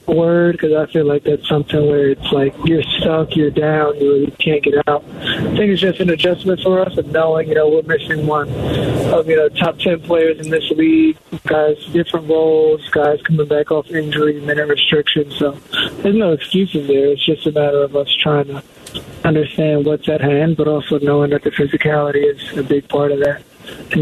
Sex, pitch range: male, 145-160 Hz